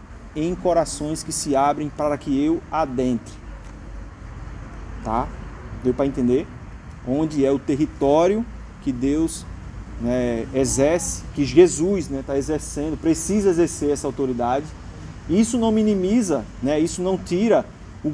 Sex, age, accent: male, 30-49, Brazilian